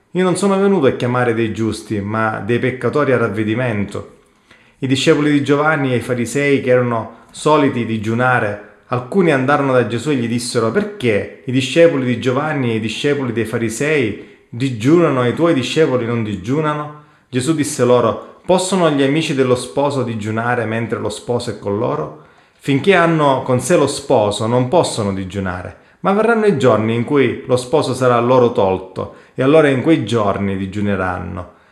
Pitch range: 115-150 Hz